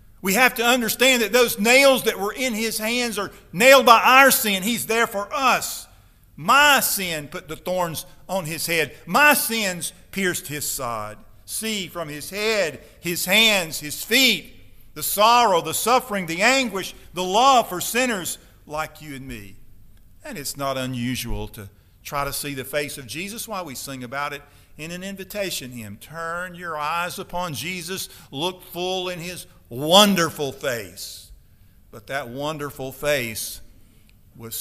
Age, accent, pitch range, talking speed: 50-69, American, 120-190 Hz, 165 wpm